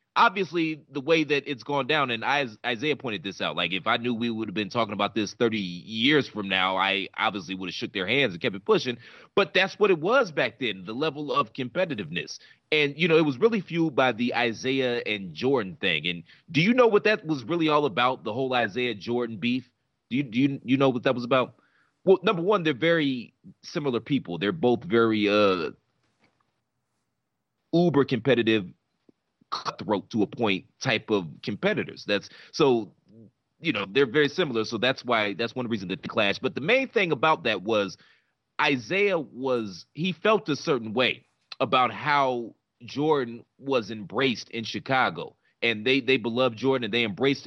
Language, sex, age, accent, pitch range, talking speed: English, male, 30-49, American, 115-160 Hz, 190 wpm